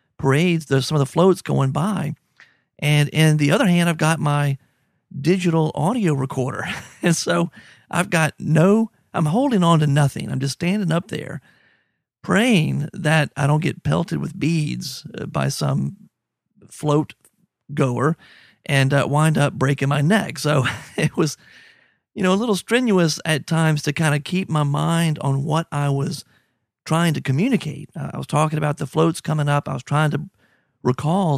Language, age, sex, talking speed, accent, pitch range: English, 40-59, male, 170 wpm, American, 140-170 Hz